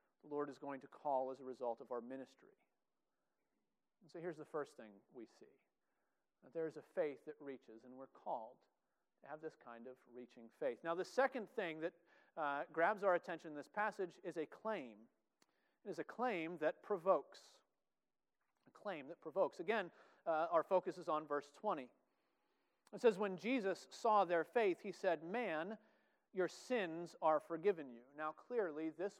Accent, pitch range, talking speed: American, 150-205 Hz, 175 wpm